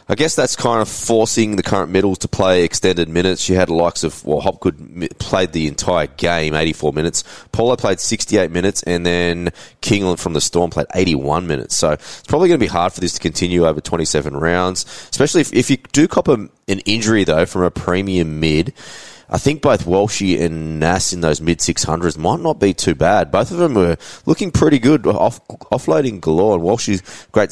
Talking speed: 205 wpm